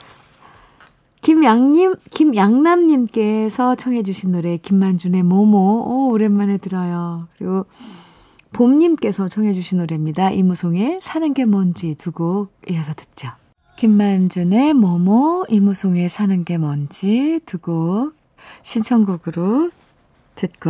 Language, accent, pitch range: Korean, native, 175-230 Hz